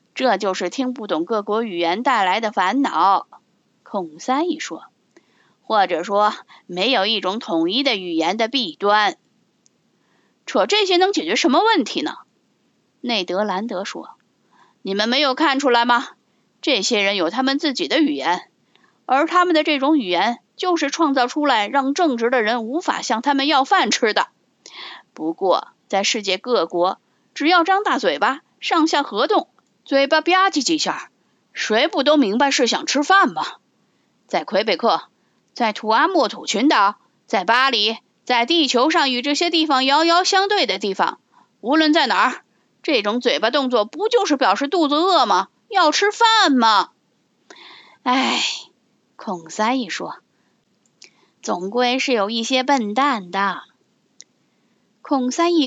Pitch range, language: 220-315 Hz, Chinese